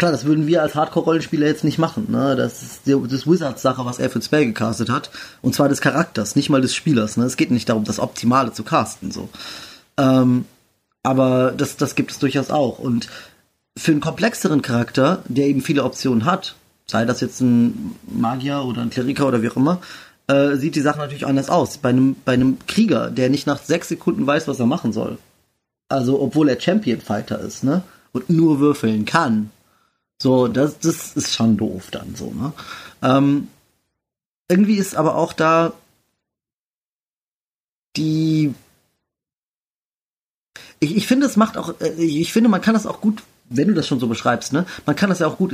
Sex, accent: male, German